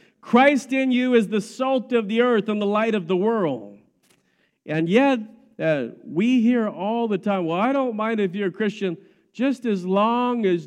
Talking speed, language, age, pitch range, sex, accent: 195 wpm, English, 50-69, 170-235 Hz, male, American